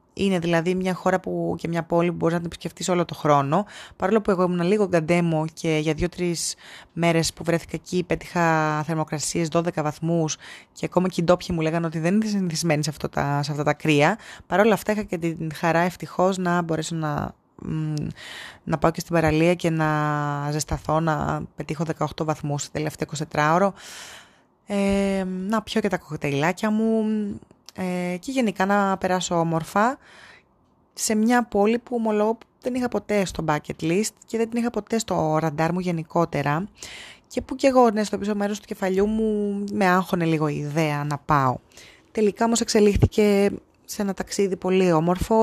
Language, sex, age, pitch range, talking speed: Greek, female, 20-39, 160-200 Hz, 175 wpm